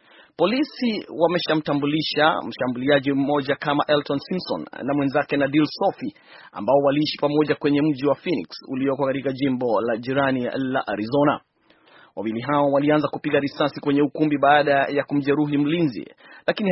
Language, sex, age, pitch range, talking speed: Swahili, male, 30-49, 140-160 Hz, 135 wpm